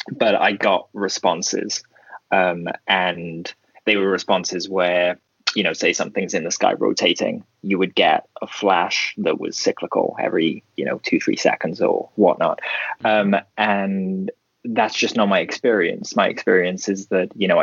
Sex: male